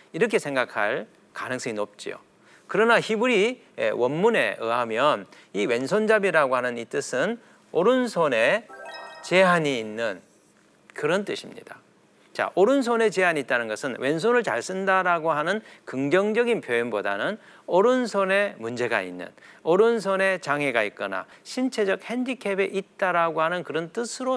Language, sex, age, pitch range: Korean, male, 40-59, 150-220 Hz